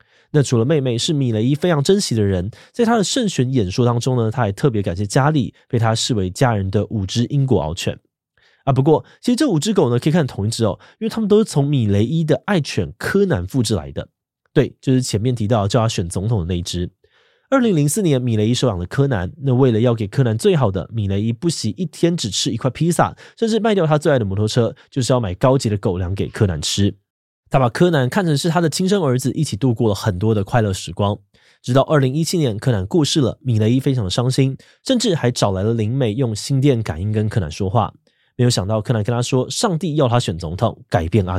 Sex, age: male, 20-39